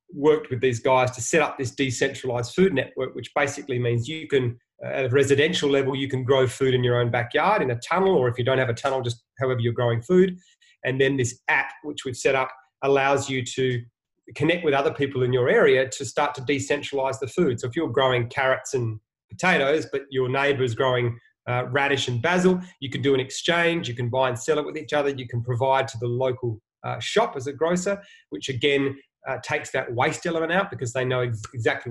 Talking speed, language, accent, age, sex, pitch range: 230 wpm, English, Australian, 30-49, male, 125-145 Hz